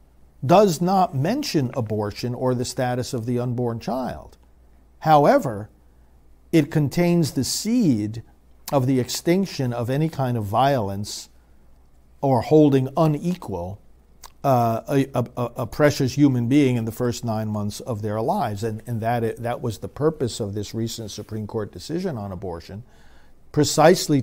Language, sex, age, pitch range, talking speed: English, male, 50-69, 105-140 Hz, 145 wpm